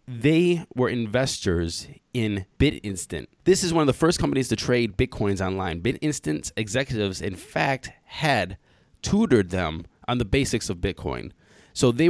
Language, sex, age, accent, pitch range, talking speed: English, male, 20-39, American, 100-130 Hz, 150 wpm